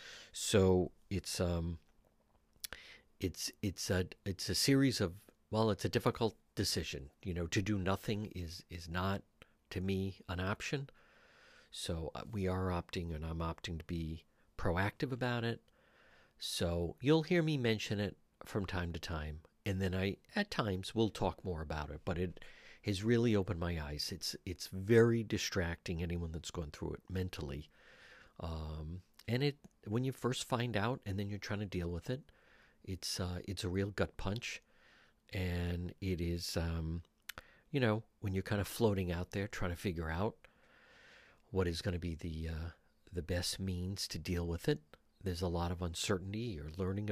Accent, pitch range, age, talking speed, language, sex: American, 85-105 Hz, 50-69, 175 wpm, English, male